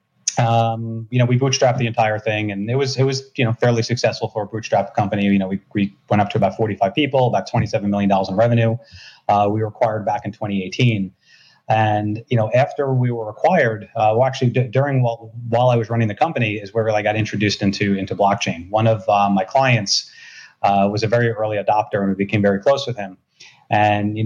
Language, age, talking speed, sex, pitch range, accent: English, 30-49, 225 wpm, male, 100-120 Hz, American